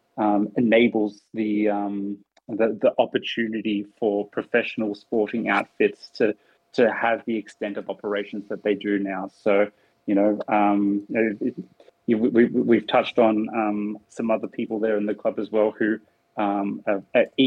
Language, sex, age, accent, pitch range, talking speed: English, male, 20-39, Australian, 105-120 Hz, 160 wpm